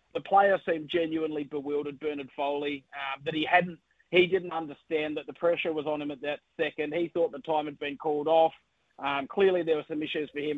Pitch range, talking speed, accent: 150-170 Hz, 220 wpm, Australian